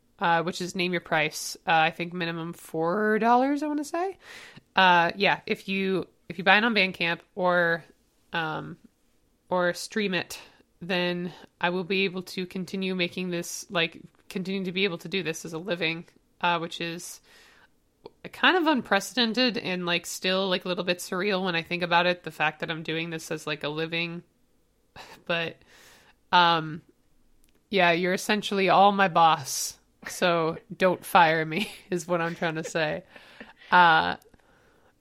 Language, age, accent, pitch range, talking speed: English, 20-39, American, 170-195 Hz, 170 wpm